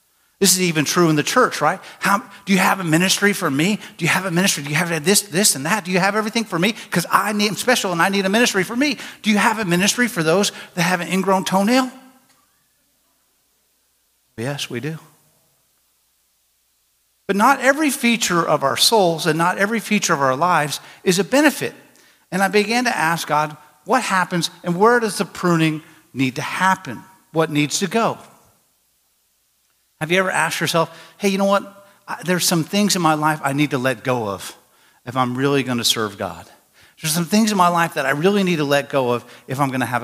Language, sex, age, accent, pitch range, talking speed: English, male, 50-69, American, 145-200 Hz, 215 wpm